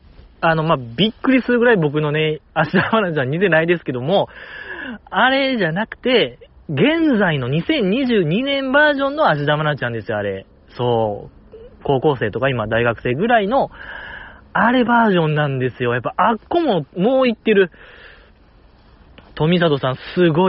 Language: Japanese